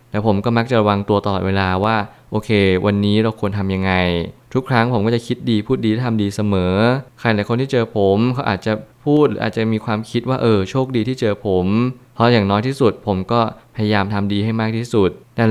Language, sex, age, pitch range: Thai, male, 20-39, 100-120 Hz